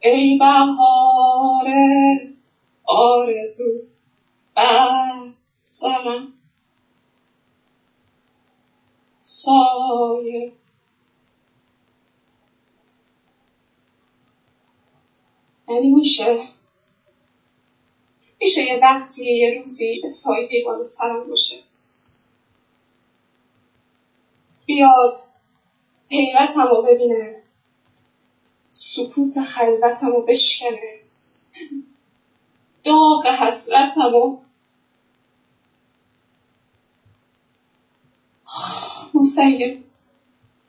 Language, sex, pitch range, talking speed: Persian, female, 240-280 Hz, 45 wpm